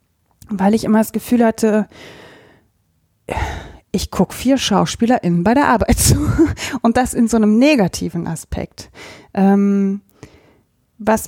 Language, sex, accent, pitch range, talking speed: German, female, German, 200-245 Hz, 115 wpm